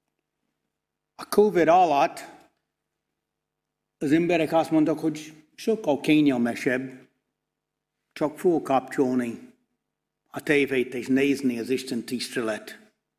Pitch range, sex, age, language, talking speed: 150-215 Hz, male, 60-79, Hungarian, 100 wpm